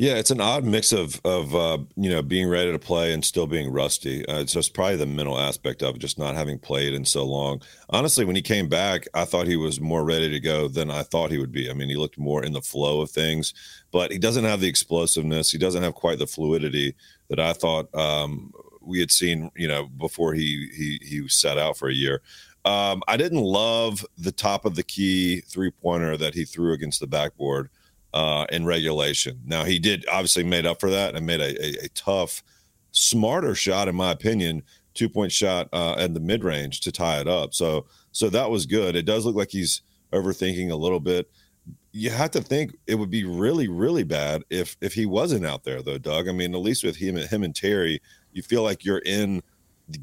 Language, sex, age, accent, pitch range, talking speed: English, male, 40-59, American, 75-95 Hz, 225 wpm